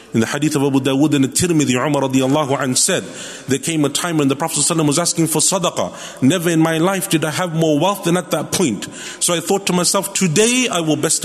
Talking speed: 245 wpm